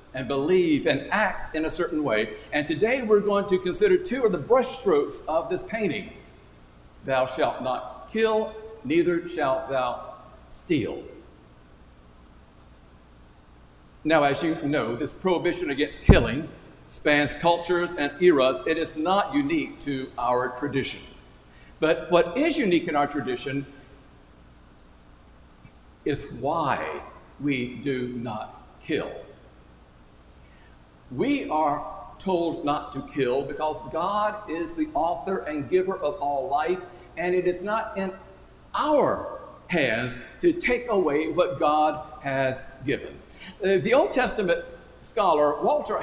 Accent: American